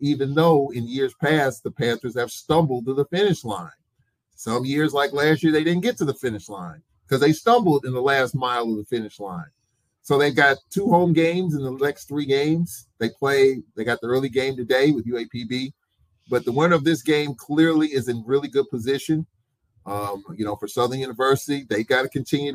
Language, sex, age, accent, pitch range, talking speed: English, male, 30-49, American, 125-155 Hz, 215 wpm